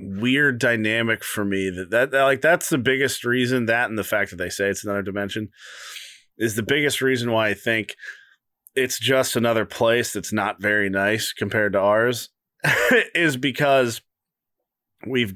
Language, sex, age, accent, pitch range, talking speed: English, male, 30-49, American, 105-125 Hz, 170 wpm